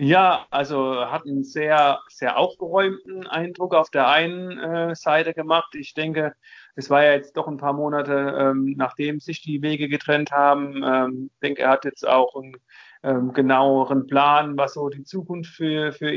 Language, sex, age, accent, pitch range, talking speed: German, male, 40-59, German, 135-150 Hz, 180 wpm